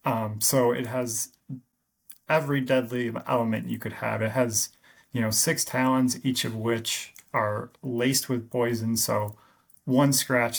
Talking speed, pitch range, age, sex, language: 145 wpm, 110-130 Hz, 30-49, male, English